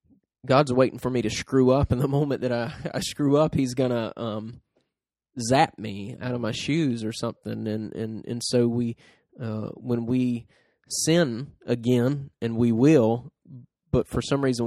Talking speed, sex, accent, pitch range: 180 wpm, male, American, 110-130 Hz